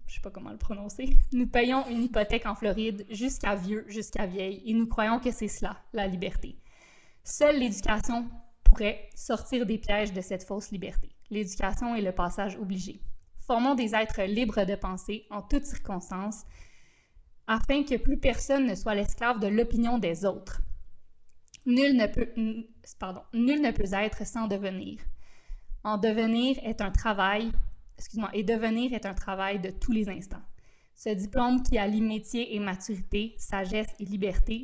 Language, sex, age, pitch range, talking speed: French, female, 20-39, 200-230 Hz, 165 wpm